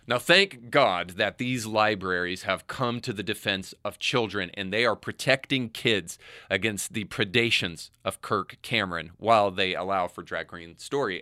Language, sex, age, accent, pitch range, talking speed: English, male, 30-49, American, 95-125 Hz, 165 wpm